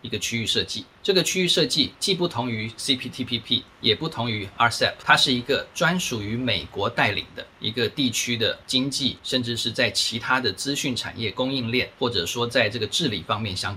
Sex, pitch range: male, 105-130 Hz